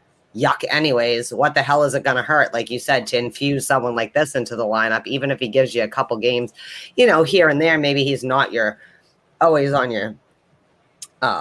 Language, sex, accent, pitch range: English, female, American, 125-155 Hz